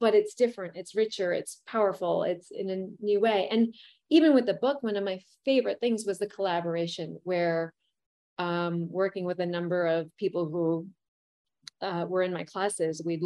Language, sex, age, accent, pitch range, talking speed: English, female, 30-49, American, 175-235 Hz, 180 wpm